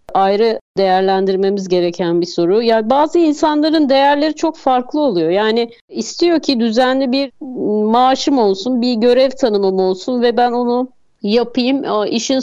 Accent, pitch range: native, 210-265 Hz